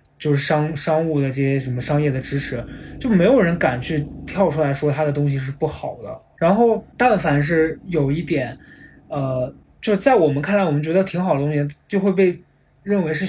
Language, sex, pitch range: Chinese, male, 140-170 Hz